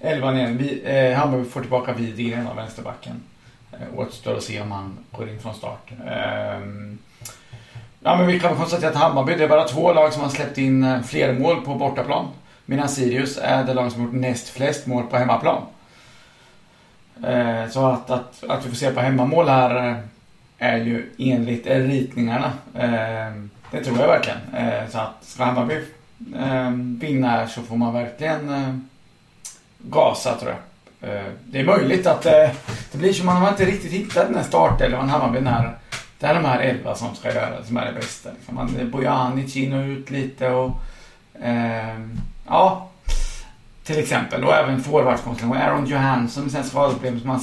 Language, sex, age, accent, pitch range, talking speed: English, male, 30-49, Swedish, 120-135 Hz, 180 wpm